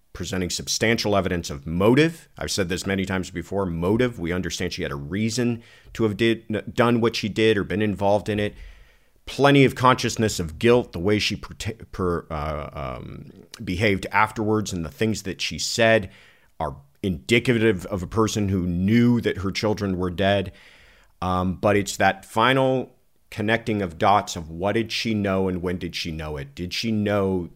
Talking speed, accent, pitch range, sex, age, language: 185 wpm, American, 90-115 Hz, male, 40-59, English